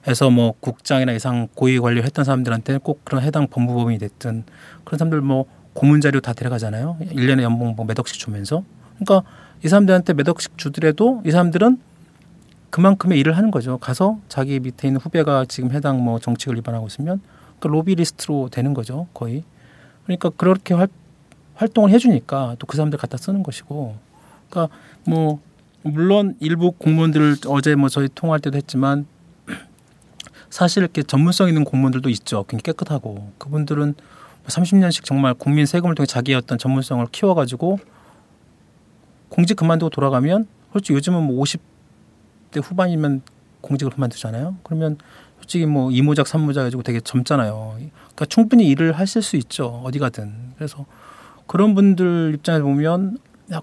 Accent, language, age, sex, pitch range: native, Korean, 40-59, male, 130-170 Hz